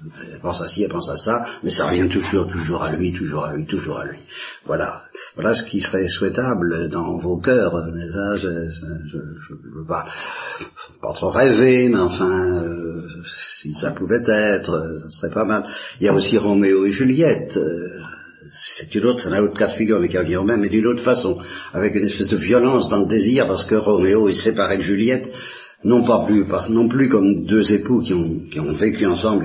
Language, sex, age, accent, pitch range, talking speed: Italian, male, 60-79, French, 85-105 Hz, 210 wpm